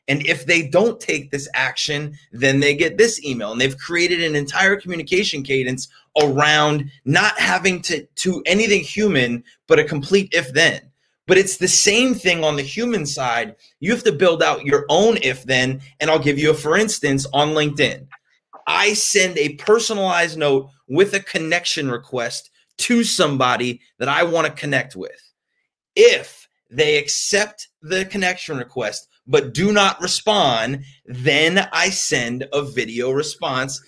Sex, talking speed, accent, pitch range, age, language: male, 160 wpm, American, 140-195 Hz, 30-49, English